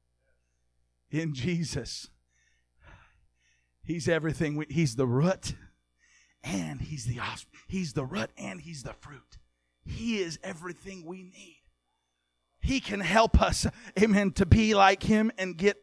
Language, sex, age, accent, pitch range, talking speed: English, male, 40-59, American, 135-185 Hz, 130 wpm